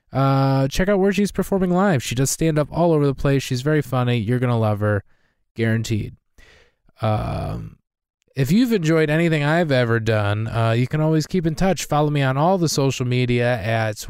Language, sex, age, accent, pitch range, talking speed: English, male, 20-39, American, 125-170 Hz, 200 wpm